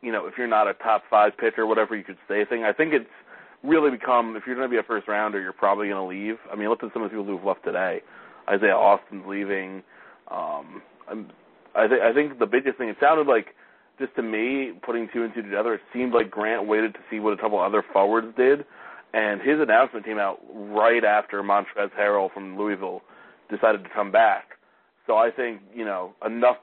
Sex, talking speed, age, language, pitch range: male, 225 wpm, 30-49, English, 100-110 Hz